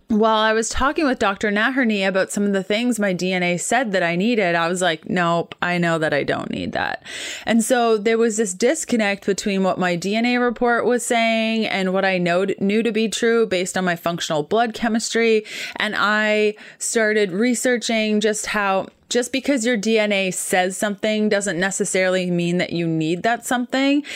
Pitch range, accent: 180-225 Hz, American